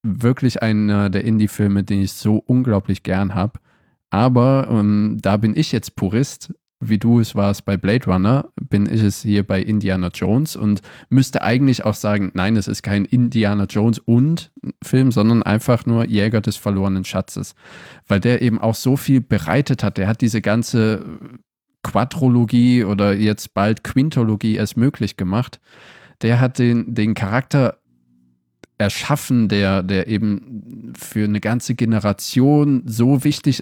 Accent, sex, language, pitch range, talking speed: German, male, German, 100-120 Hz, 155 wpm